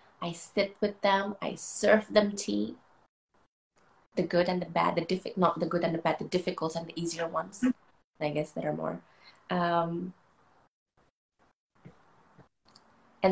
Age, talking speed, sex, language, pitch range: 20-39, 155 wpm, female, English, 160-190 Hz